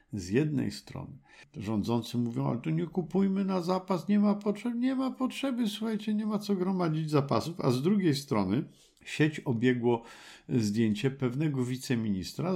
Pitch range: 100-145 Hz